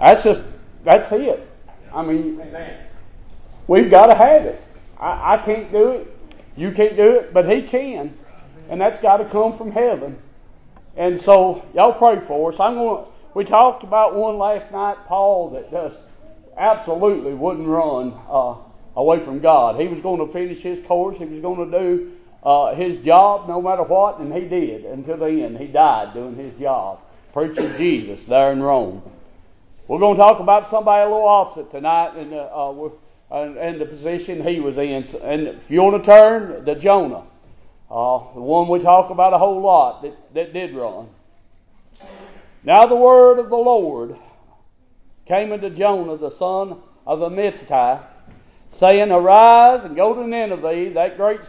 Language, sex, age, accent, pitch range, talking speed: English, male, 40-59, American, 155-210 Hz, 170 wpm